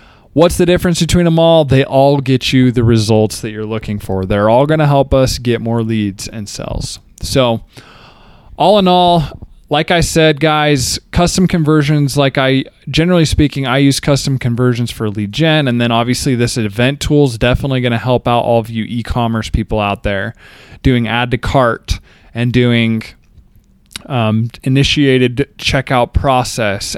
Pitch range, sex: 110-135 Hz, male